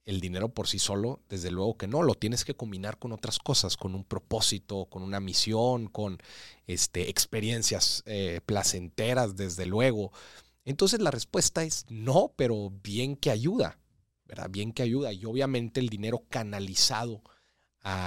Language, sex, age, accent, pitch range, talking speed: Spanish, male, 40-59, Mexican, 90-125 Hz, 155 wpm